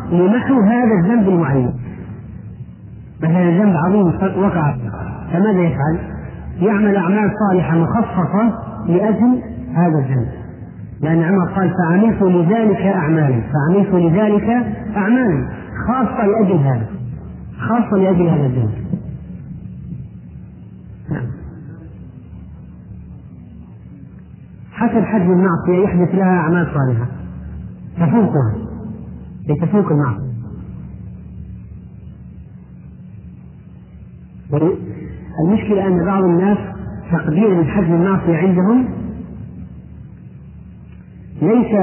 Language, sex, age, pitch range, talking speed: Arabic, male, 40-59, 140-195 Hz, 75 wpm